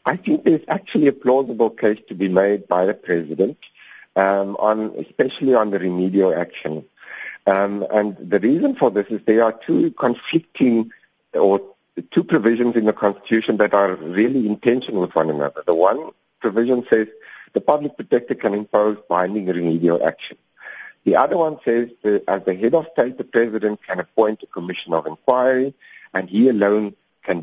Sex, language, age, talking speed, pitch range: male, English, 60-79, 175 wpm, 100-125 Hz